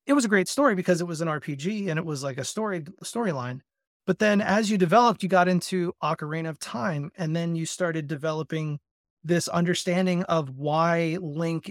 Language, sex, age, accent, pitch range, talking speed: English, male, 30-49, American, 145-175 Hz, 200 wpm